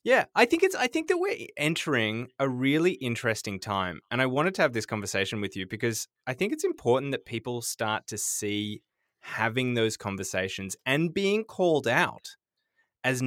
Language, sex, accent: English, male, Australian